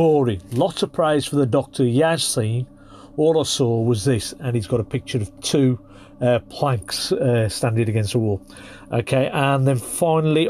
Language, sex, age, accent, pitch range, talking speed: English, male, 50-69, British, 115-145 Hz, 170 wpm